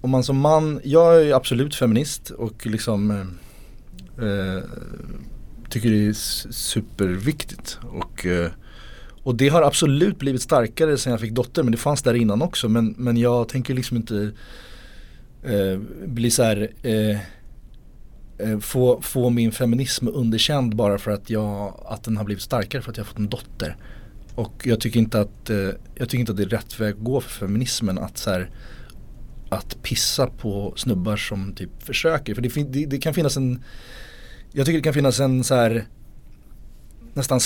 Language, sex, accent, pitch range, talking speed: Swedish, male, native, 105-135 Hz, 175 wpm